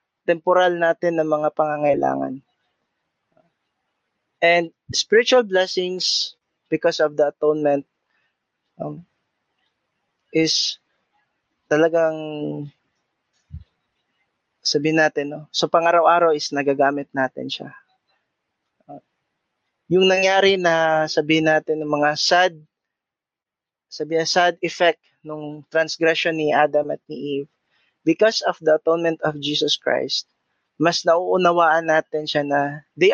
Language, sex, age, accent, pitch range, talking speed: Filipino, male, 20-39, native, 150-170 Hz, 100 wpm